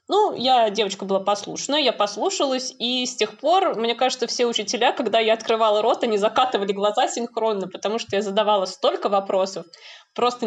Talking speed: 170 wpm